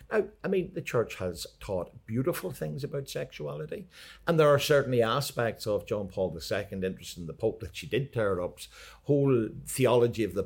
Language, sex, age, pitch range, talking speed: English, male, 60-79, 95-130 Hz, 185 wpm